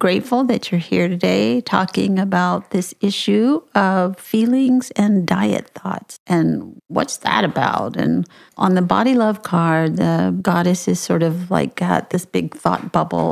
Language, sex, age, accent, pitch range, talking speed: English, female, 50-69, American, 165-210 Hz, 160 wpm